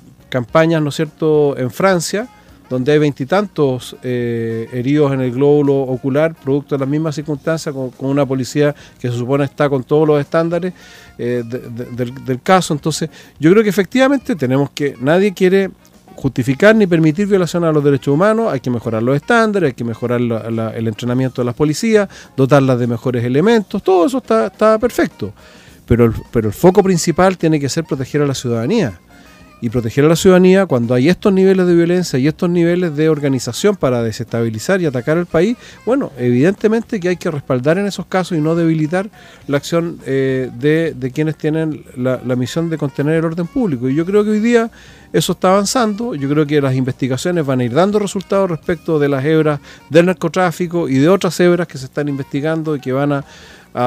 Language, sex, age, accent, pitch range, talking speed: Spanish, male, 40-59, Argentinian, 130-180 Hz, 200 wpm